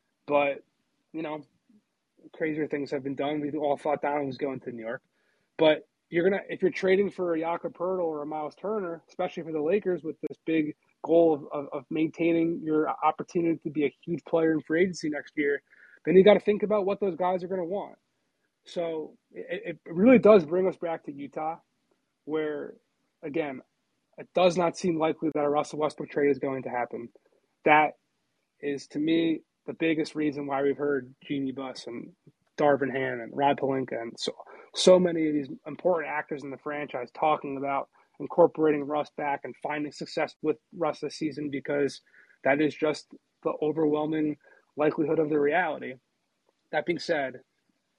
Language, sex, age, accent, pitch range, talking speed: English, male, 20-39, American, 145-170 Hz, 185 wpm